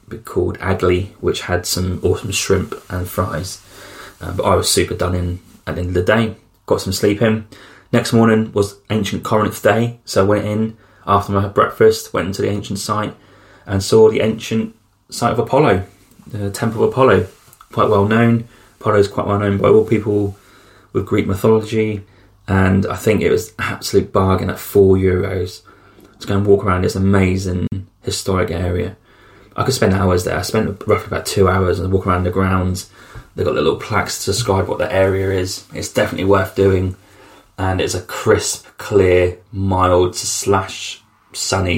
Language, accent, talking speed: English, British, 185 wpm